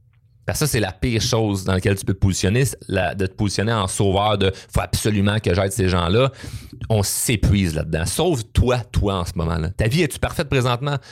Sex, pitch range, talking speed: male, 105-130 Hz, 205 wpm